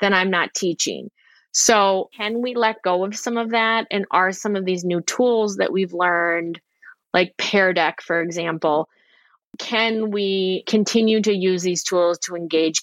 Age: 20-39